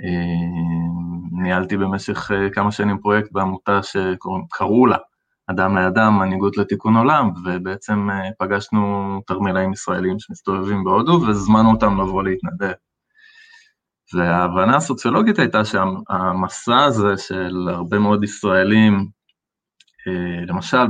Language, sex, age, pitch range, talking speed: Hebrew, male, 20-39, 95-110 Hz, 95 wpm